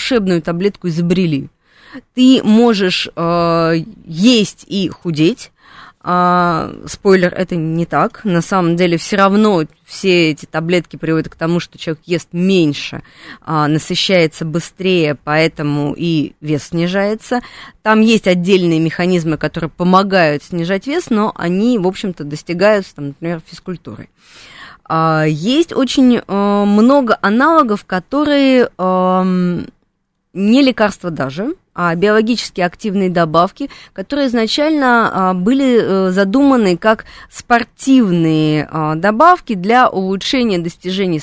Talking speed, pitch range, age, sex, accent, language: 110 wpm, 165-220 Hz, 20-39, female, native, Russian